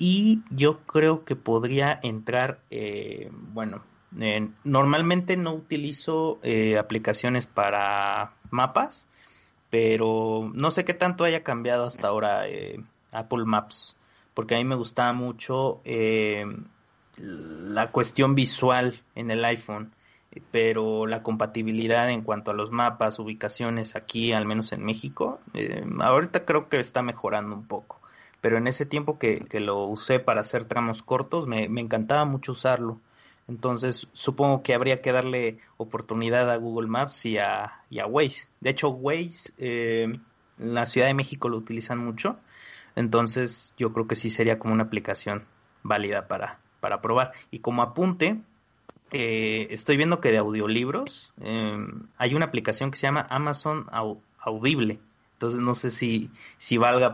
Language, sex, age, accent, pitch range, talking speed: Spanish, male, 30-49, Mexican, 110-130 Hz, 150 wpm